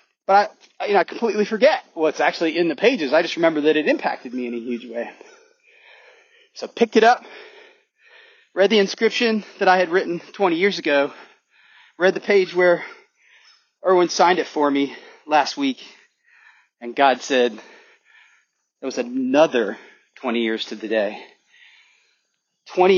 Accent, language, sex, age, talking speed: American, English, male, 30-49, 155 wpm